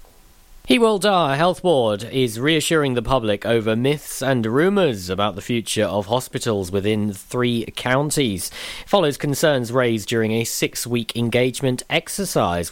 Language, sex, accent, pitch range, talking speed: English, male, British, 110-145 Hz, 130 wpm